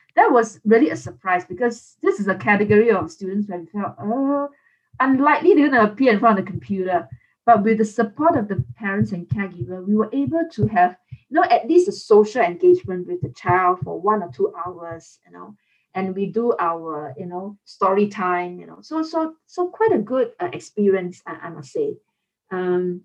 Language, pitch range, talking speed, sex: English, 185-260 Hz, 210 wpm, female